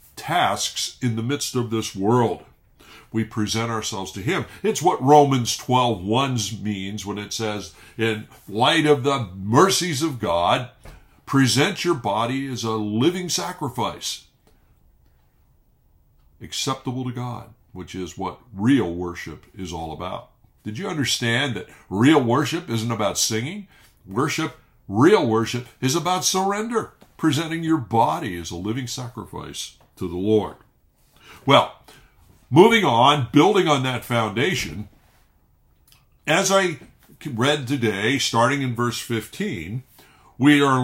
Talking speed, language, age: 130 wpm, English, 60-79